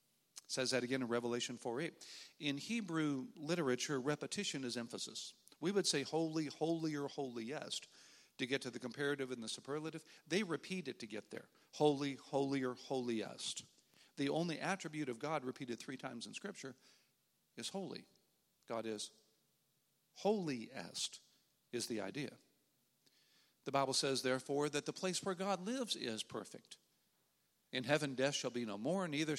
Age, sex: 50-69, male